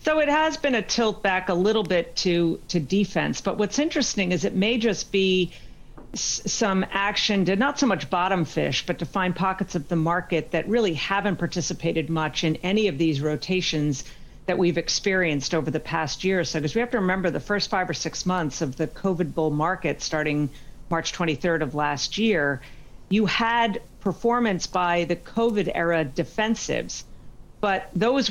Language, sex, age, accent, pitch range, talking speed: English, female, 50-69, American, 155-195 Hz, 185 wpm